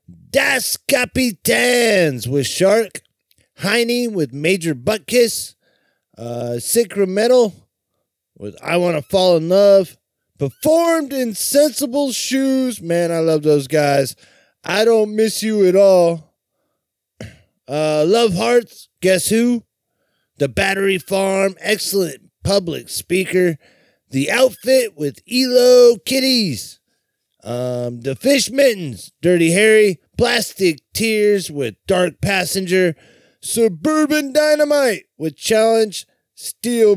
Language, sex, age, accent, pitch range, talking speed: English, male, 30-49, American, 155-230 Hz, 105 wpm